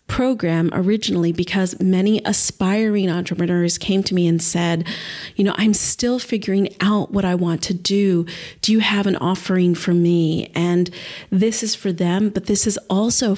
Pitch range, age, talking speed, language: 175-205 Hz, 40-59, 170 wpm, English